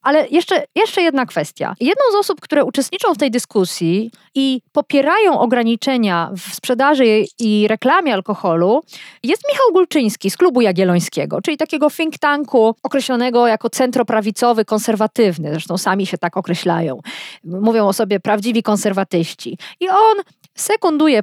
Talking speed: 135 wpm